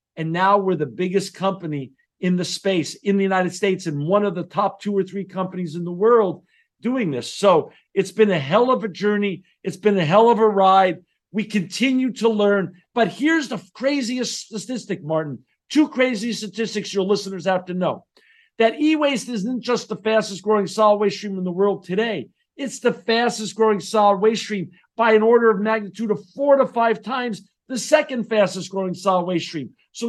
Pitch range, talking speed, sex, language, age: 180-230 Hz, 195 wpm, male, English, 50-69